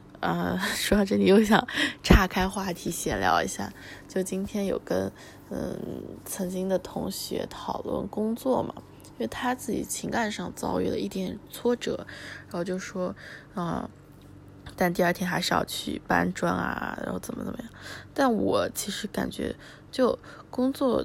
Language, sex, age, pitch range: Chinese, female, 20-39, 185-225 Hz